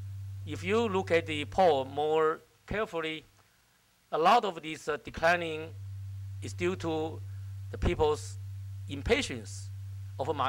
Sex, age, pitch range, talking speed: male, 50-69, 100-150 Hz, 125 wpm